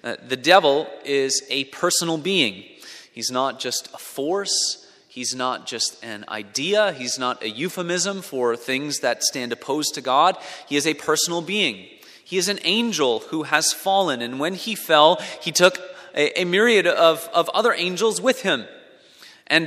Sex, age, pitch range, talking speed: male, 30-49, 145-185 Hz, 170 wpm